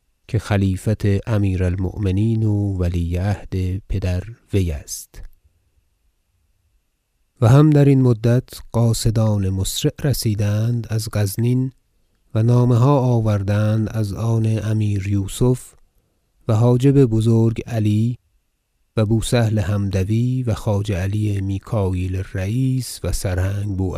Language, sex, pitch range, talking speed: Persian, male, 95-115 Hz, 105 wpm